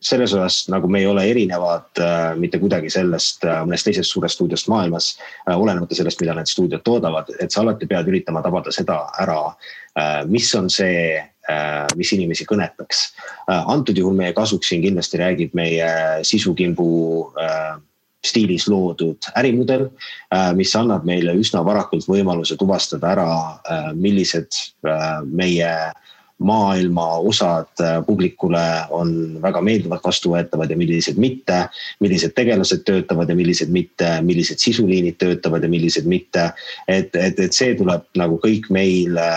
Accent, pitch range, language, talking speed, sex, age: Finnish, 80-95 Hz, English, 145 wpm, male, 30-49